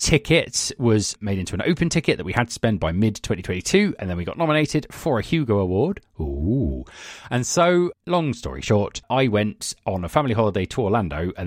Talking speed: 205 wpm